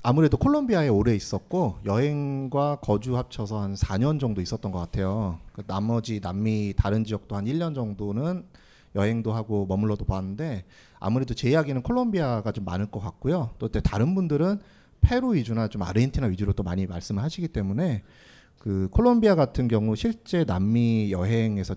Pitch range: 100-135 Hz